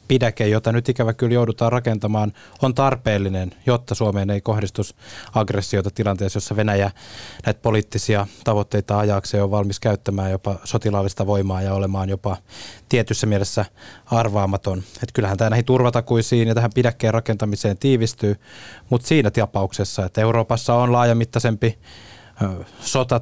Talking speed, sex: 130 wpm, male